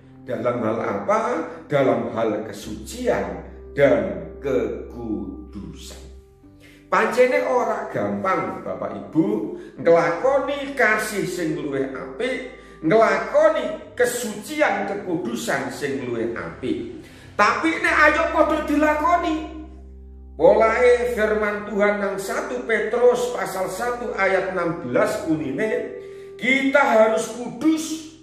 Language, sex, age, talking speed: Indonesian, male, 50-69, 85 wpm